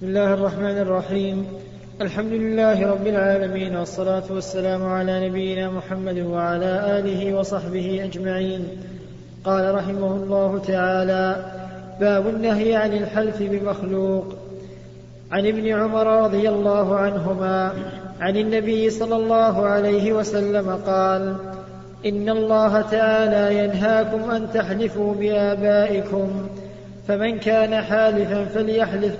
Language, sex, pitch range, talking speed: Arabic, male, 195-215 Hz, 105 wpm